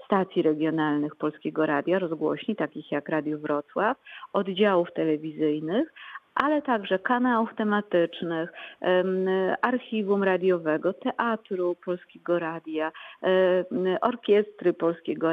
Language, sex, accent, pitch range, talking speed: Polish, female, native, 175-230 Hz, 85 wpm